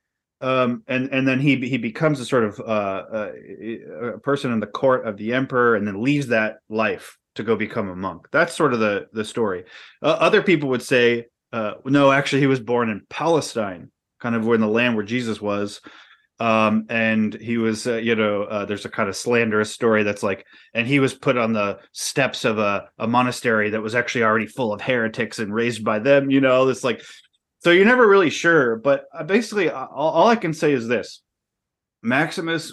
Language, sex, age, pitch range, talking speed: English, male, 20-39, 110-135 Hz, 205 wpm